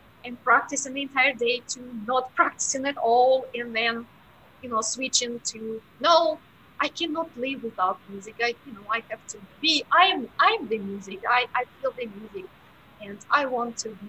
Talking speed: 190 wpm